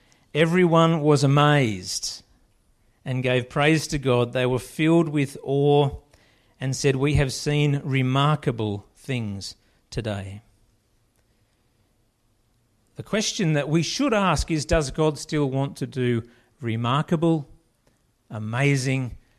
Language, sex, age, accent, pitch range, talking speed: English, male, 50-69, Australian, 115-155 Hz, 110 wpm